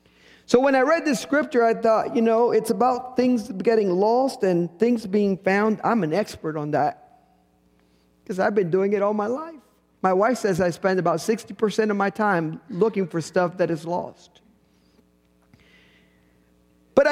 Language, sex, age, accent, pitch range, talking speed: English, male, 50-69, American, 190-270 Hz, 170 wpm